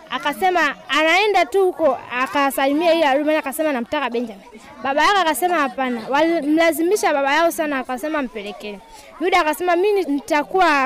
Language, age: Swahili, 20-39